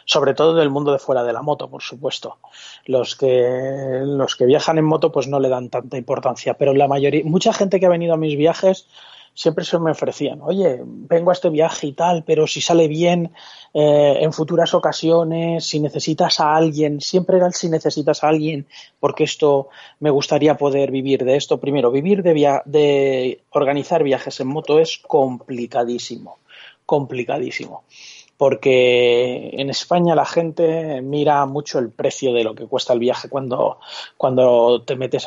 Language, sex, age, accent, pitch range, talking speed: Spanish, male, 30-49, Spanish, 130-160 Hz, 175 wpm